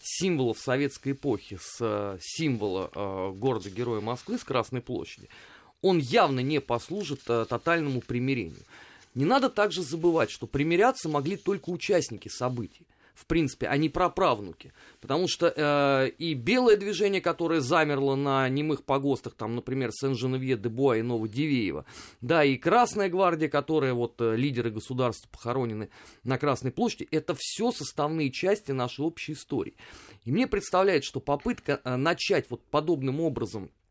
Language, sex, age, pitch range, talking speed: Russian, male, 30-49, 120-165 Hz, 145 wpm